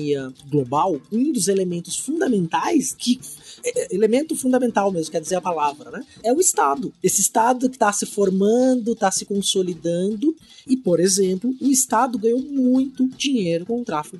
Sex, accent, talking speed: male, Brazilian, 155 wpm